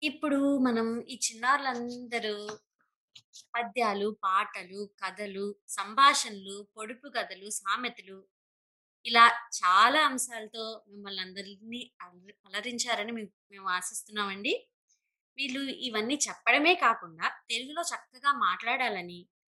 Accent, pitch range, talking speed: native, 200-245 Hz, 80 wpm